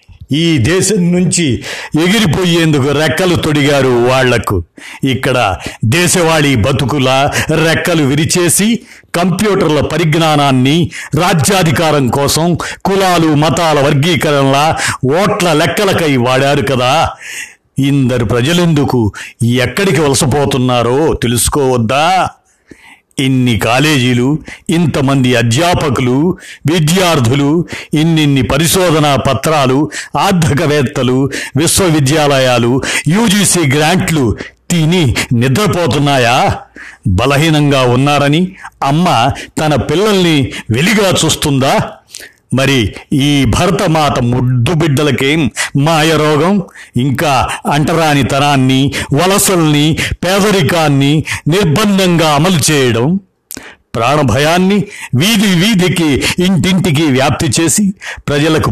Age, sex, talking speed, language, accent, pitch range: 60-79, male, 75 wpm, Telugu, native, 130-170 Hz